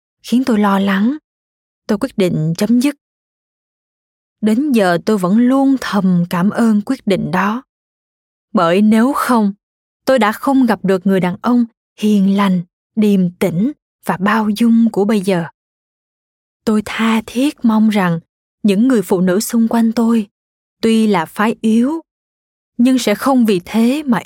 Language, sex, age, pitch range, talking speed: Vietnamese, female, 20-39, 190-235 Hz, 155 wpm